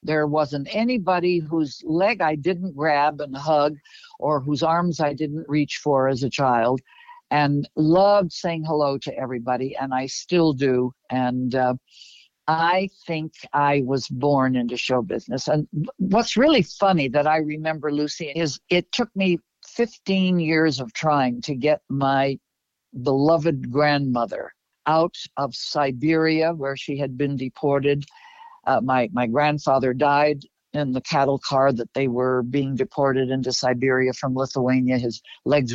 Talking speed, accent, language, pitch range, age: 150 wpm, American, English, 130-160 Hz, 60-79